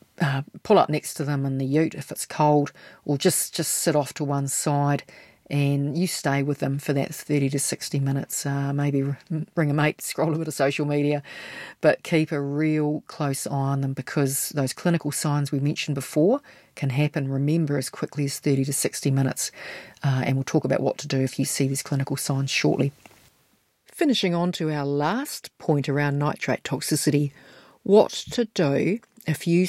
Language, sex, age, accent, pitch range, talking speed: English, female, 40-59, Australian, 140-165 Hz, 195 wpm